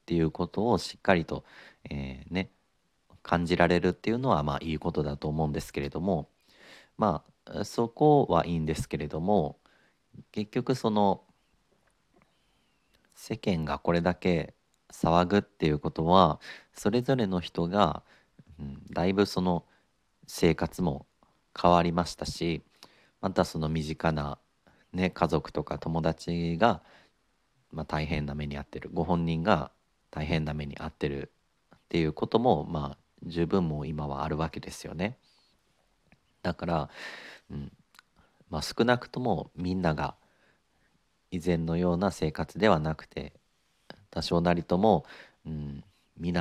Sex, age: male, 40-59